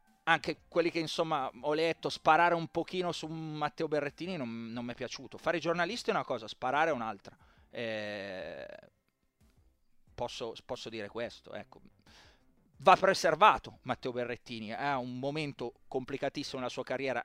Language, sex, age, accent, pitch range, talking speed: Italian, male, 30-49, native, 115-155 Hz, 150 wpm